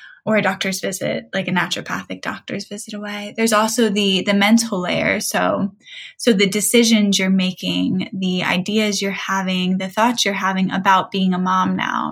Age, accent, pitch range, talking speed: 10-29, American, 190-220 Hz, 175 wpm